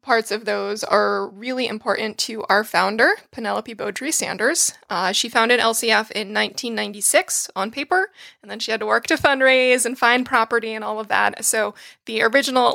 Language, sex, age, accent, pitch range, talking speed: English, female, 20-39, American, 210-250 Hz, 180 wpm